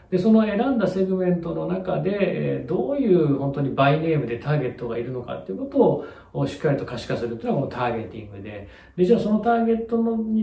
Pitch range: 115-170 Hz